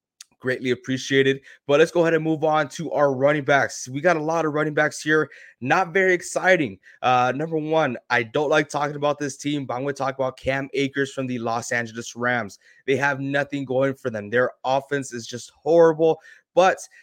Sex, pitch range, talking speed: male, 120-145 Hz, 210 wpm